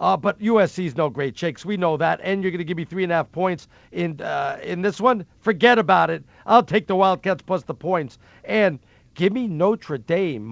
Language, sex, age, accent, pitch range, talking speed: English, male, 50-69, American, 150-200 Hz, 230 wpm